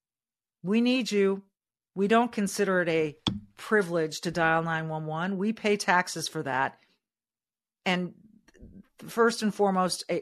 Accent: American